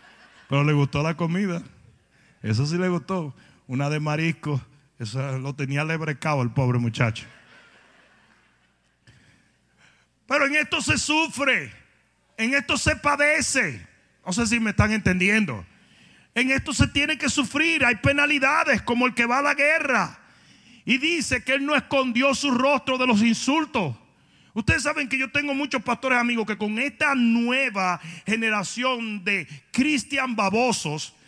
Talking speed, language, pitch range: 145 wpm, Spanish, 180-275 Hz